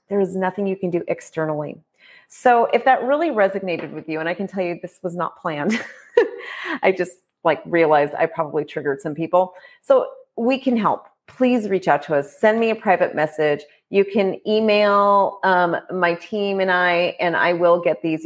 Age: 30-49